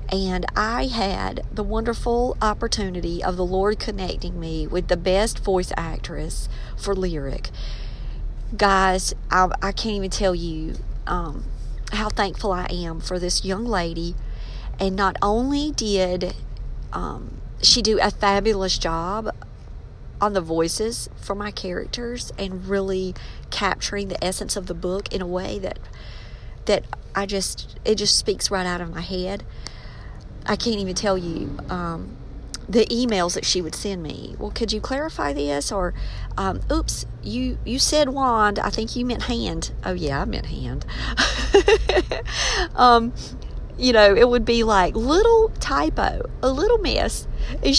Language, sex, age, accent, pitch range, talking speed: English, female, 40-59, American, 175-220 Hz, 150 wpm